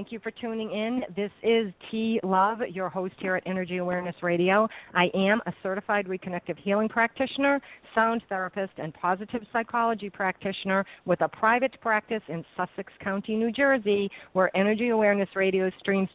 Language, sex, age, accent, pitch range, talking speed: English, female, 50-69, American, 170-220 Hz, 160 wpm